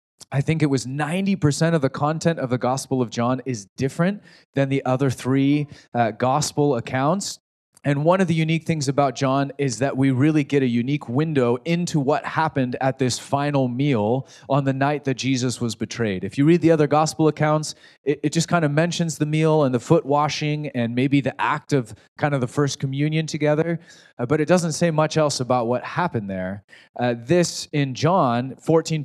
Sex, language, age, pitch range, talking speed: male, English, 30-49, 130-160 Hz, 200 wpm